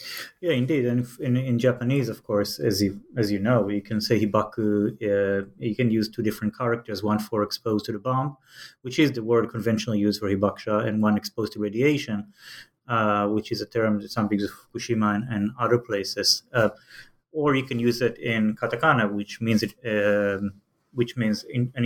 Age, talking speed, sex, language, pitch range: 30-49, 200 wpm, male, English, 105-130 Hz